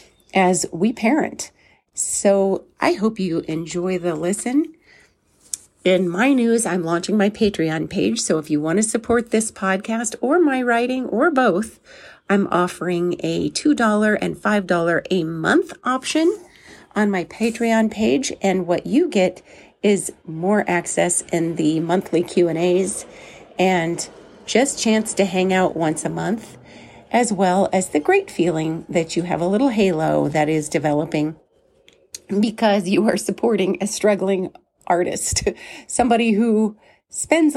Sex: female